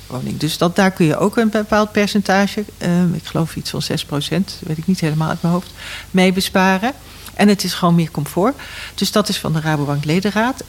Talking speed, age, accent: 220 wpm, 60-79, Dutch